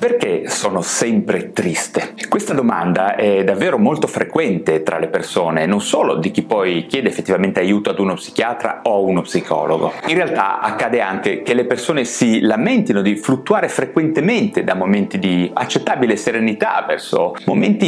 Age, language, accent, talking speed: 30-49, Italian, native, 155 wpm